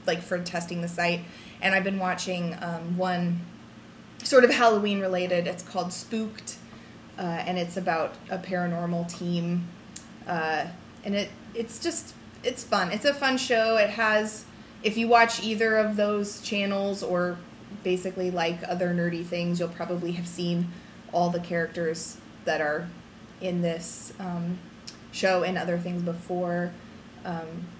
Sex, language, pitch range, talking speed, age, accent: female, English, 175-220 Hz, 150 wpm, 20-39, American